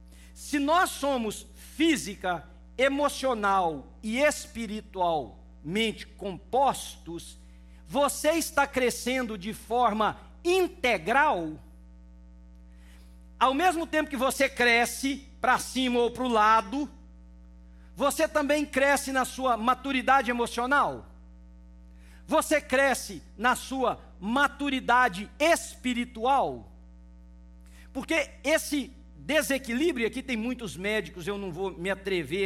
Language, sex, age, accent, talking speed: English, male, 50-69, Brazilian, 95 wpm